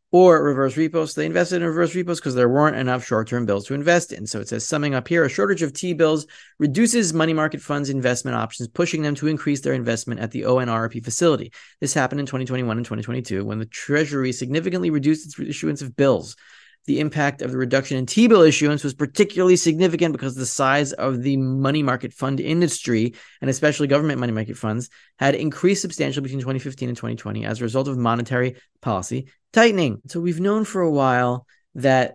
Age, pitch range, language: 30-49, 115-150 Hz, English